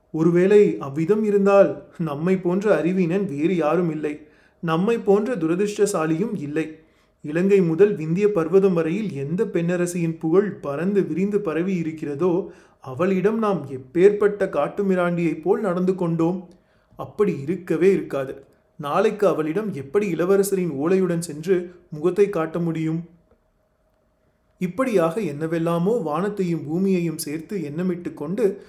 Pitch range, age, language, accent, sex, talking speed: 155-195 Hz, 30-49, Tamil, native, male, 105 wpm